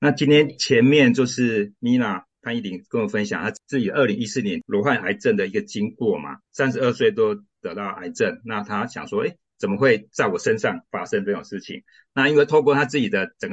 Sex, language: male, Chinese